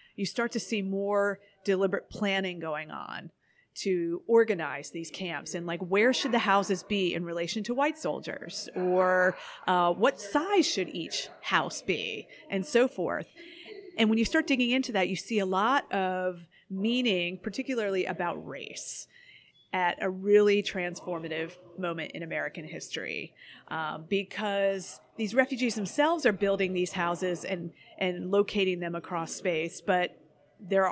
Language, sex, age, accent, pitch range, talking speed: English, female, 30-49, American, 175-215 Hz, 150 wpm